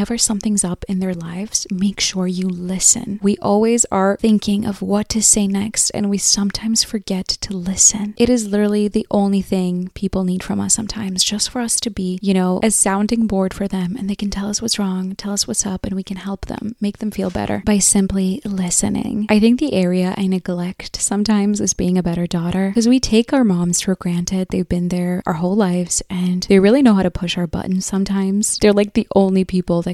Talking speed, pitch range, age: 225 wpm, 185-205 Hz, 20-39